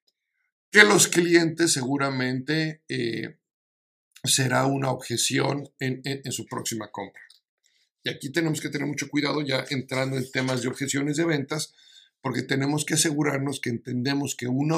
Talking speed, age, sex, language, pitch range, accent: 150 wpm, 50-69, male, Spanish, 130-175 Hz, Mexican